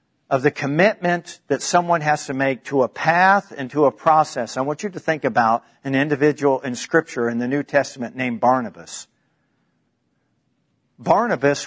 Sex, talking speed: male, 165 wpm